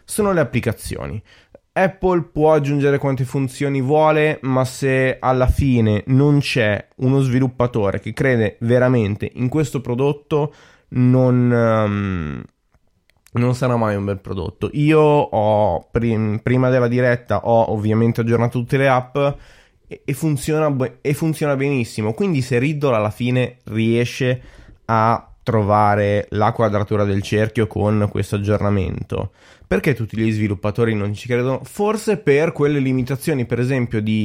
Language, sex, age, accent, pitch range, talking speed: Italian, male, 20-39, native, 110-140 Hz, 130 wpm